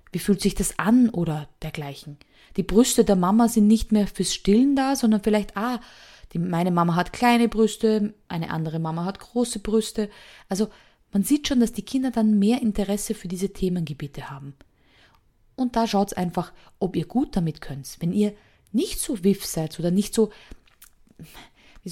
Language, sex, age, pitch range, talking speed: German, female, 20-39, 175-220 Hz, 180 wpm